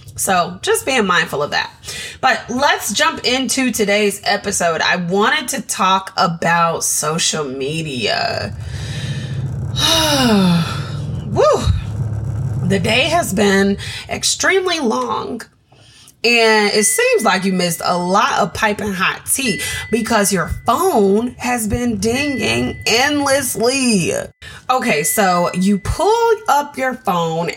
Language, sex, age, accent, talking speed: English, female, 20-39, American, 115 wpm